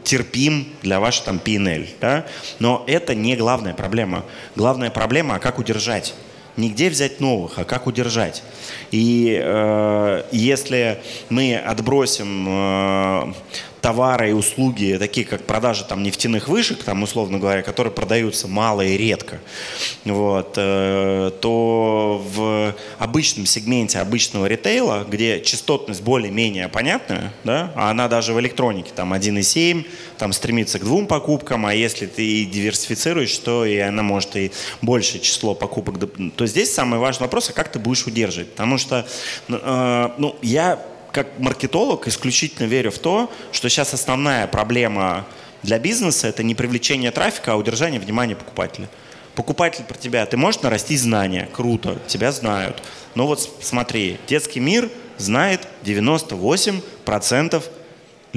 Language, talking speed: Russian, 140 wpm